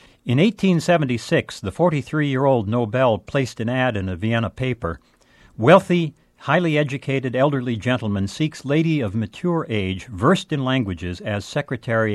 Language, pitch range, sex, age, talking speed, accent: English, 95-135 Hz, male, 60-79, 135 wpm, American